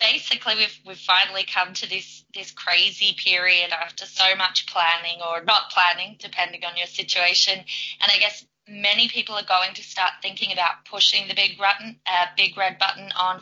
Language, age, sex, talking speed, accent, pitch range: English, 20-39, female, 185 wpm, Australian, 175-210 Hz